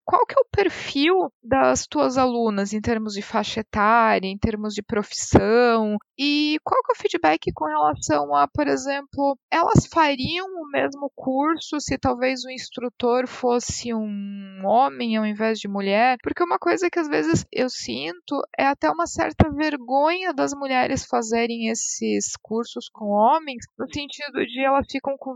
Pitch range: 220-290 Hz